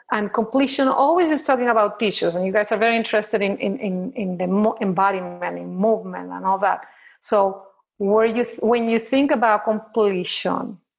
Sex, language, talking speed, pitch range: female, English, 185 wpm, 200-245 Hz